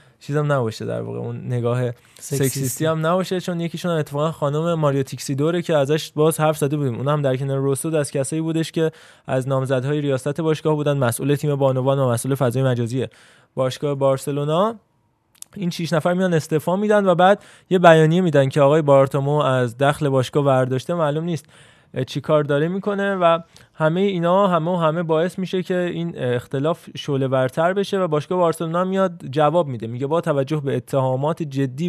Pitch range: 135-165 Hz